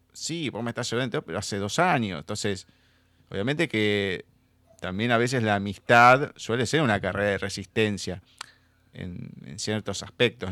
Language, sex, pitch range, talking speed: Spanish, male, 100-125 Hz, 155 wpm